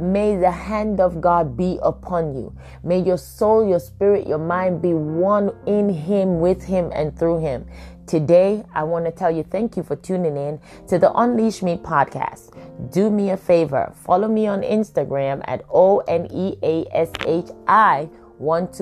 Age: 20-39